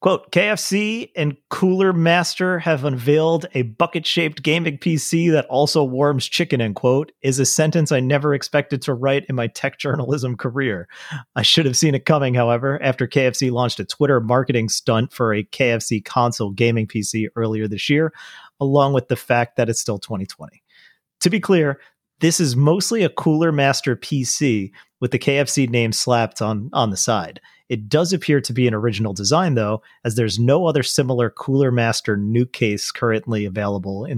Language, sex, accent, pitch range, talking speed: English, male, American, 110-145 Hz, 175 wpm